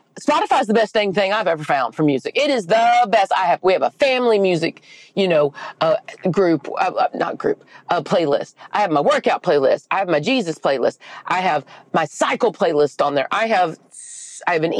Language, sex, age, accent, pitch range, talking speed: English, female, 40-59, American, 165-220 Hz, 215 wpm